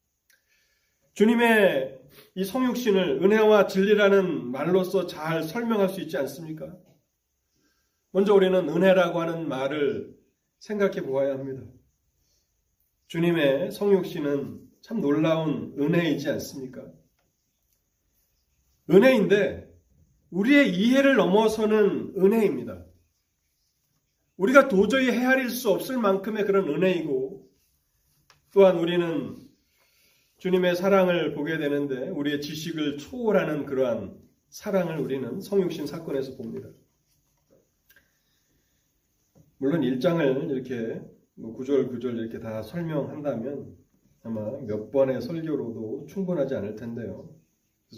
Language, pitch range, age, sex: Korean, 120-190 Hz, 40-59, male